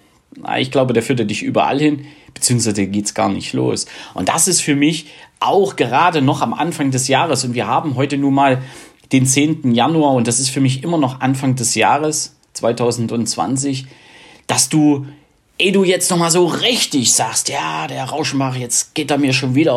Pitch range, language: 115-150 Hz, German